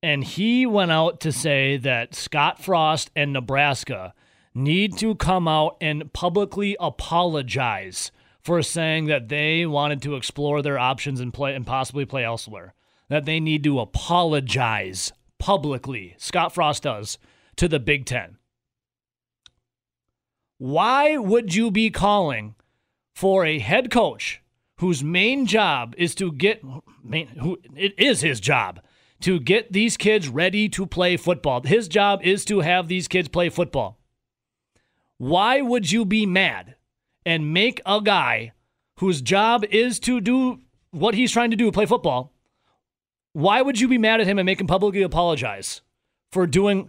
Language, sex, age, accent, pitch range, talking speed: English, male, 30-49, American, 135-205 Hz, 150 wpm